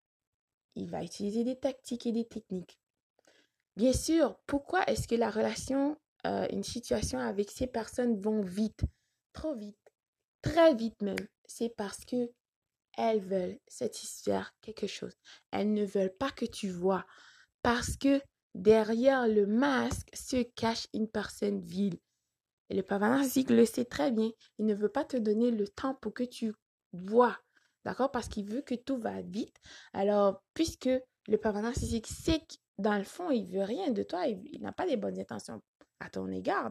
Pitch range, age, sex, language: 205-265 Hz, 20-39, female, French